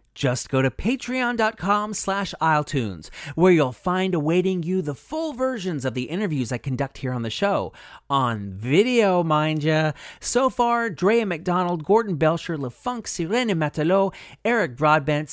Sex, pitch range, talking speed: male, 140-200 Hz, 145 wpm